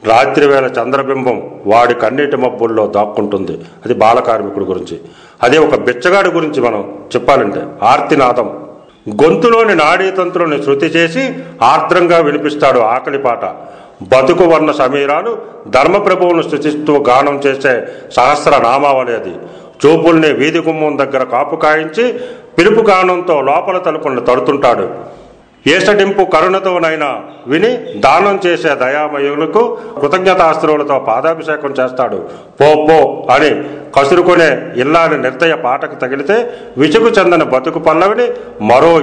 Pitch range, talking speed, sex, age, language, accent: 145-190 Hz, 100 wpm, male, 40-59, Telugu, native